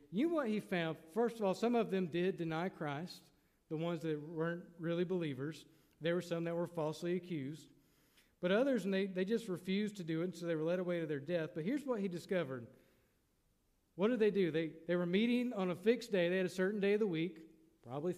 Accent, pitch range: American, 155-195 Hz